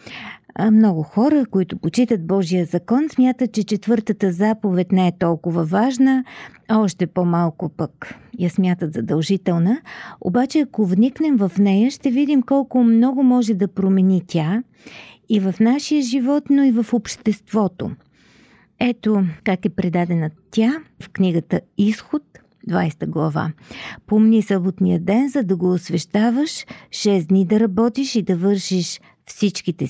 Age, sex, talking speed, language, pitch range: 40-59, female, 130 wpm, Bulgarian, 190-240 Hz